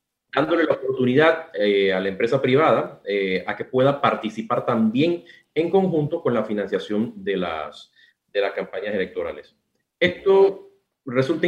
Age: 30-49